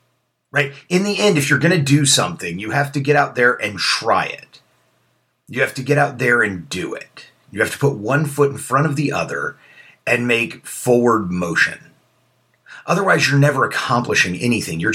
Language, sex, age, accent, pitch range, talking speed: English, male, 40-59, American, 120-140 Hz, 195 wpm